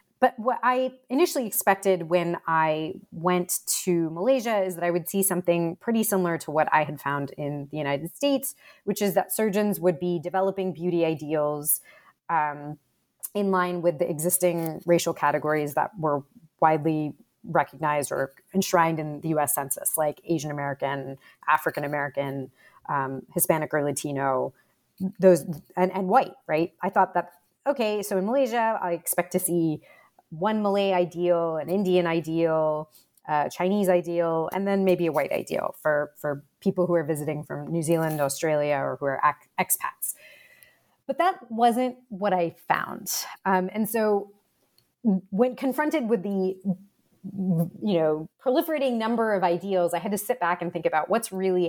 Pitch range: 155-200 Hz